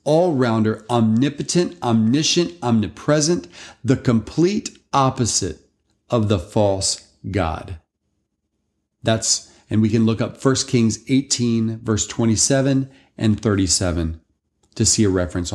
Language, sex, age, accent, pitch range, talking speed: English, male, 40-59, American, 105-140 Hz, 110 wpm